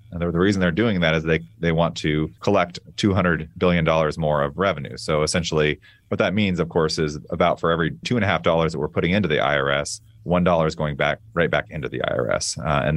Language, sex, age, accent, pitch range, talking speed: English, male, 30-49, American, 80-105 Hz, 240 wpm